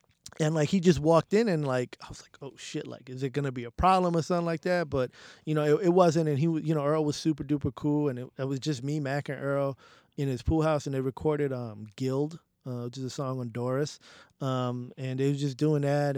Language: English